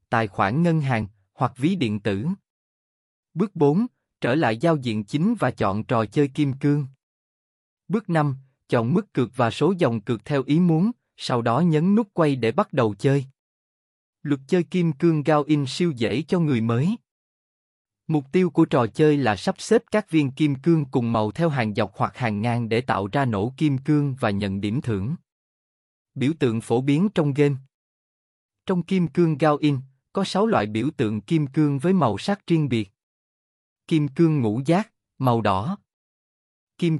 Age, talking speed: 20-39, 185 wpm